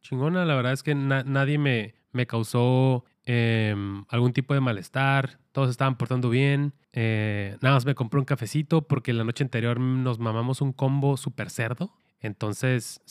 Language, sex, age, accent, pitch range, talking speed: Spanish, male, 20-39, Mexican, 130-165 Hz, 170 wpm